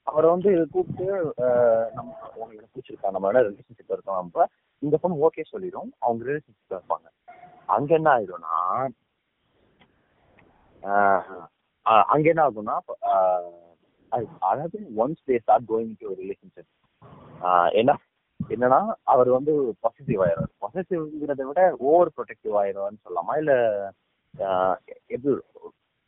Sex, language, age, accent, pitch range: male, Tamil, 30-49, native, 110-185 Hz